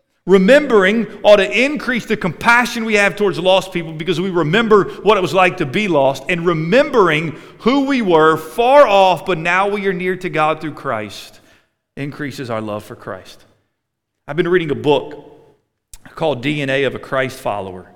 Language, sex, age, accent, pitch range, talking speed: English, male, 40-59, American, 150-210 Hz, 175 wpm